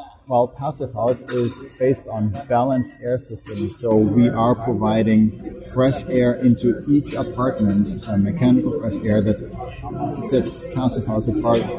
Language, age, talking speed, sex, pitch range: English, 40-59, 140 wpm, male, 105-125 Hz